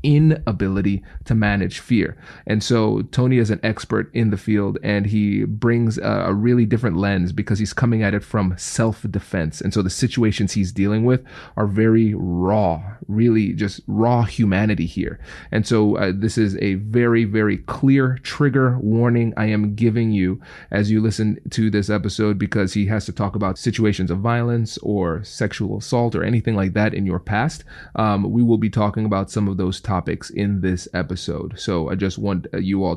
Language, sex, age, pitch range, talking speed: English, male, 30-49, 95-110 Hz, 185 wpm